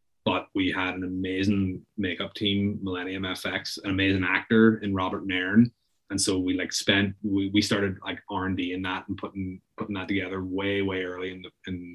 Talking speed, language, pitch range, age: 190 wpm, English, 95-115 Hz, 30-49